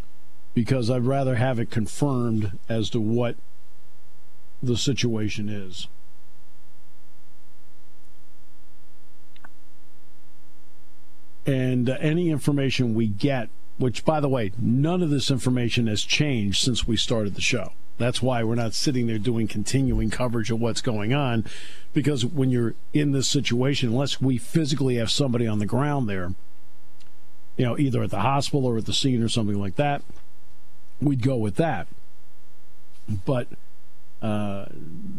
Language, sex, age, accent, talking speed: English, male, 50-69, American, 140 wpm